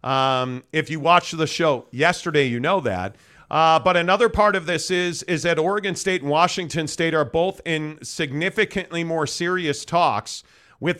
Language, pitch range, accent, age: English, 145-180 Hz, American, 40-59